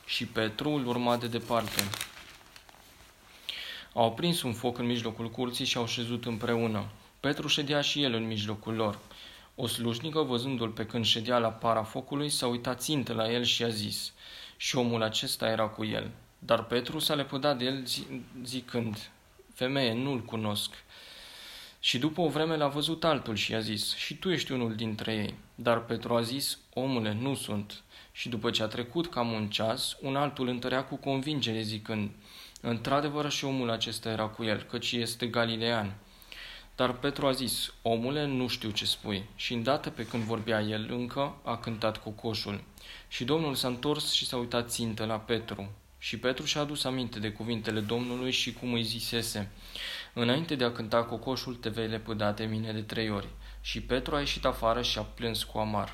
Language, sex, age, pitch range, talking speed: Romanian, male, 20-39, 110-130 Hz, 180 wpm